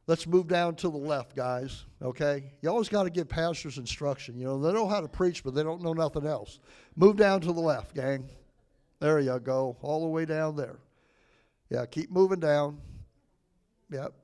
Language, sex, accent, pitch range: English, male, American, 135-165 Hz